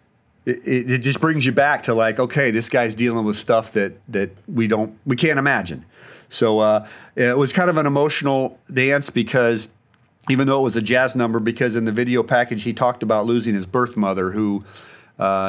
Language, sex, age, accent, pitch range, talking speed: English, male, 40-59, American, 105-125 Hz, 200 wpm